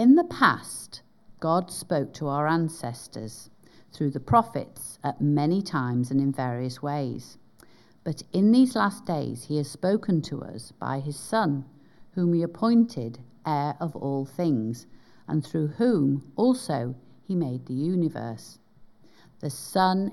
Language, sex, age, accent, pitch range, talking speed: English, female, 50-69, British, 135-180 Hz, 145 wpm